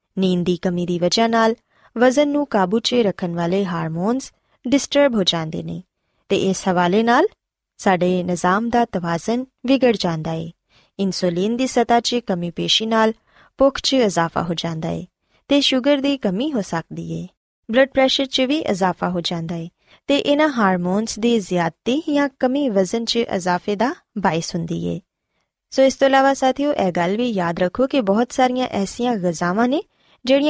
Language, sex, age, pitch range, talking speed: Punjabi, female, 20-39, 180-250 Hz, 160 wpm